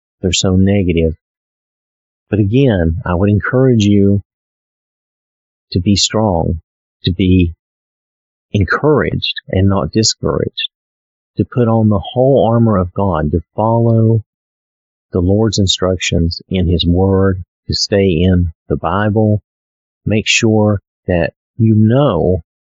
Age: 40-59